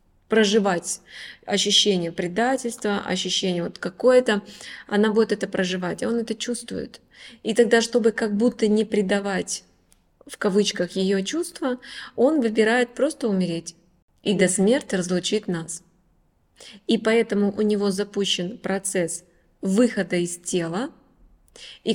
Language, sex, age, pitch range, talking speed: Russian, female, 20-39, 185-230 Hz, 120 wpm